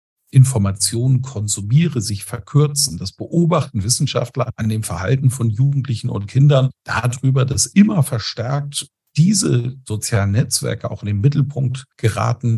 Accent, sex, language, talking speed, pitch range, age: German, male, German, 125 wpm, 105-135 Hz, 50-69